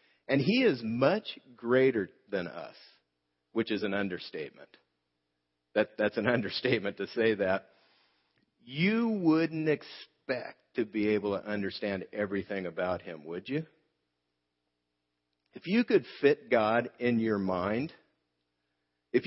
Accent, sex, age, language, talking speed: American, male, 50-69, English, 120 wpm